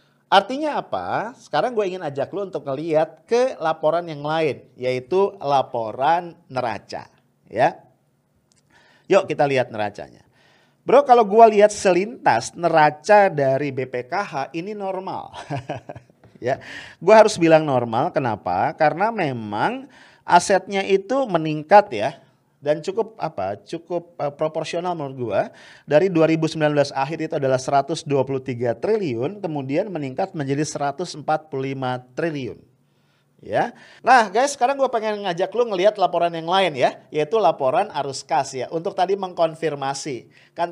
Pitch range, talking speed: 135-195 Hz, 125 wpm